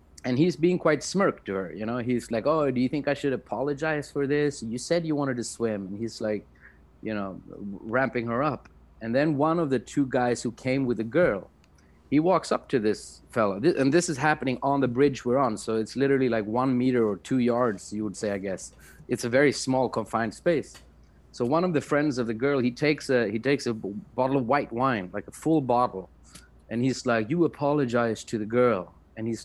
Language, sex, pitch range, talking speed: English, male, 110-145 Hz, 230 wpm